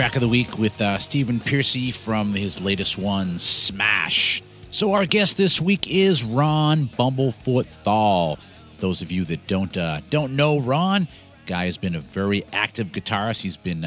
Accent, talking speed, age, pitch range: American, 170 wpm, 40-59, 100-135 Hz